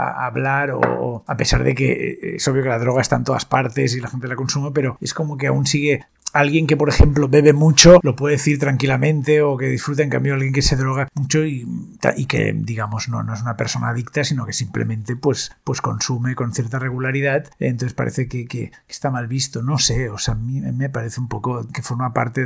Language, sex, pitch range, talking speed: Spanish, male, 120-145 Hz, 230 wpm